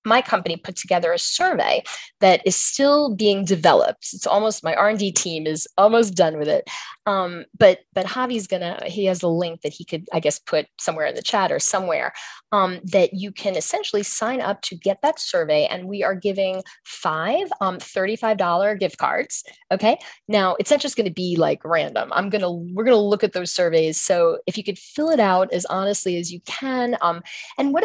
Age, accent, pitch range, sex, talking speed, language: 30-49, American, 185-245 Hz, female, 215 wpm, English